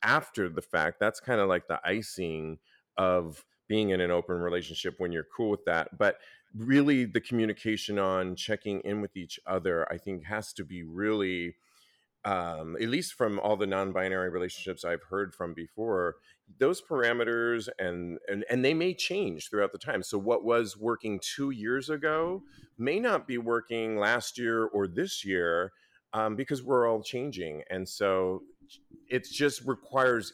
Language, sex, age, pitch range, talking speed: English, male, 40-59, 90-120 Hz, 170 wpm